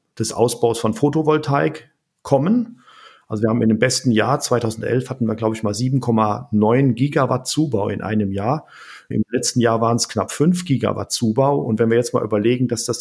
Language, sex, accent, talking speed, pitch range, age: German, male, German, 190 wpm, 110-135 Hz, 40-59